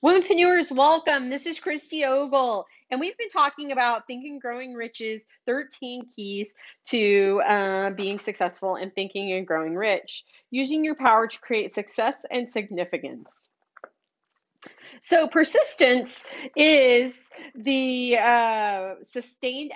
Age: 30-49